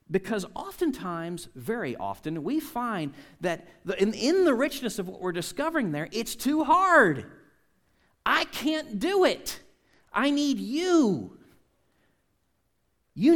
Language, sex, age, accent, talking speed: English, male, 40-59, American, 125 wpm